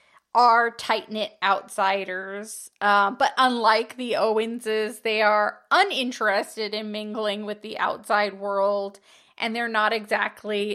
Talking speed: 115 wpm